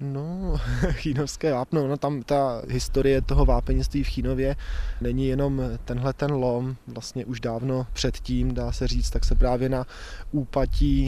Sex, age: male, 20-39